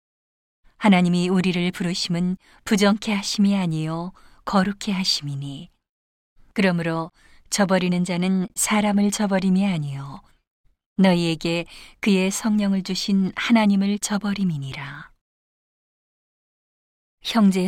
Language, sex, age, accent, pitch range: Korean, female, 40-59, native, 170-200 Hz